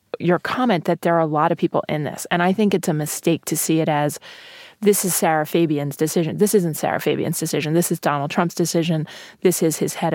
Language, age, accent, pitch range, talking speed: English, 30-49, American, 160-195 Hz, 235 wpm